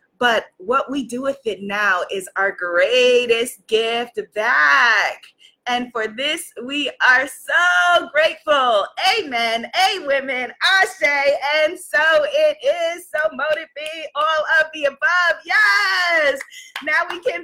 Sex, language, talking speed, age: female, English, 125 wpm, 20-39